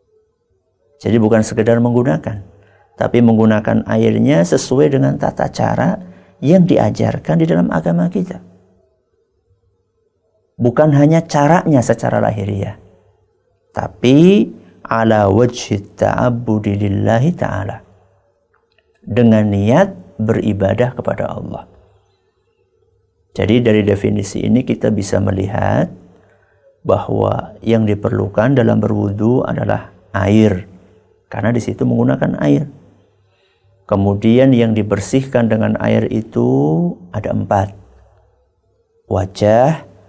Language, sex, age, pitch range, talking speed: Malay, male, 50-69, 100-125 Hz, 90 wpm